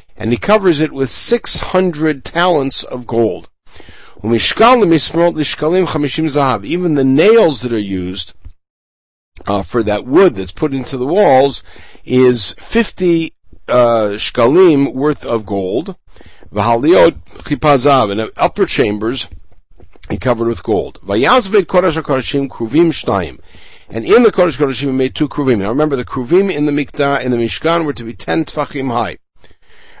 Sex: male